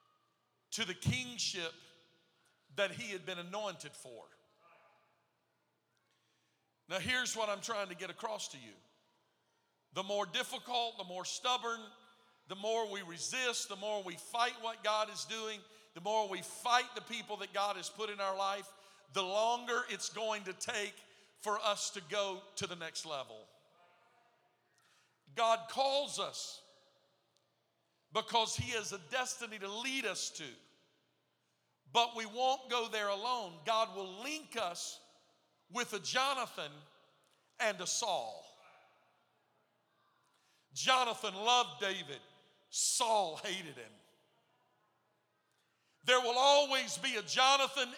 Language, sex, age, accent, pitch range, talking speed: English, male, 50-69, American, 195-240 Hz, 130 wpm